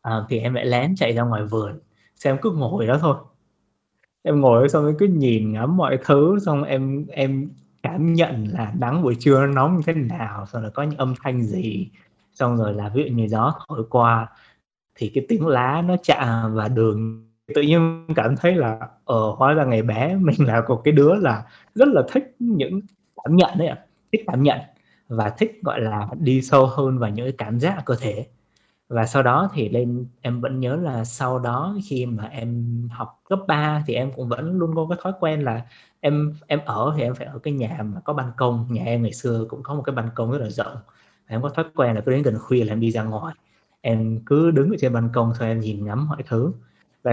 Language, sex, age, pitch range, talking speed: Vietnamese, male, 20-39, 115-150 Hz, 230 wpm